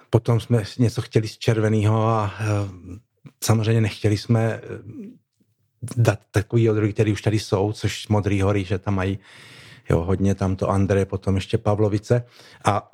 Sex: male